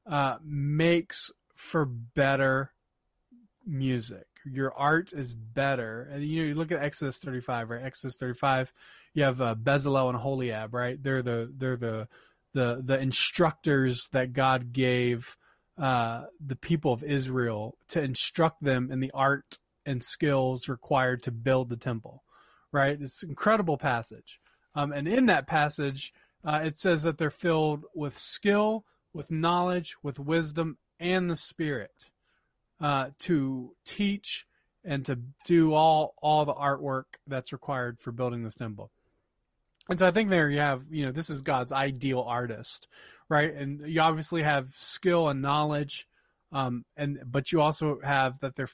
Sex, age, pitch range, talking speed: male, 30-49, 130-160 Hz, 155 wpm